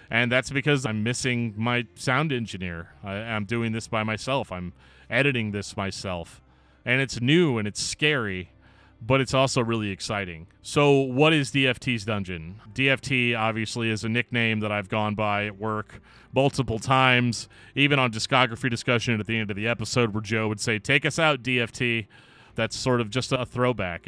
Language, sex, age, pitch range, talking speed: English, male, 30-49, 105-130 Hz, 175 wpm